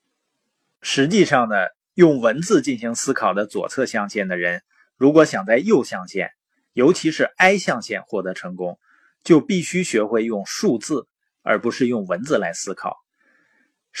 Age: 30-49